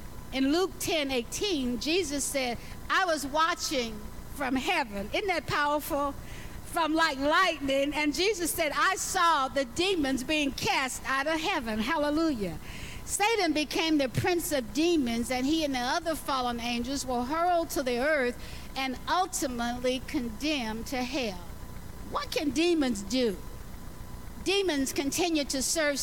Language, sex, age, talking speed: English, female, 60-79, 140 wpm